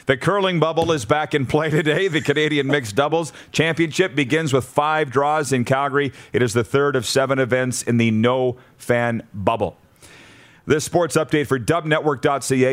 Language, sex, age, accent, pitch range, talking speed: English, male, 40-59, American, 115-145 Hz, 165 wpm